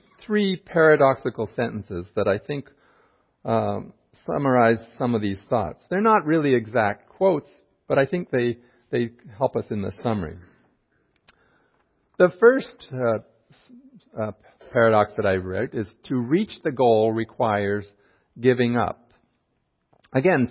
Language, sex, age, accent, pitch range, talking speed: English, male, 50-69, American, 105-145 Hz, 130 wpm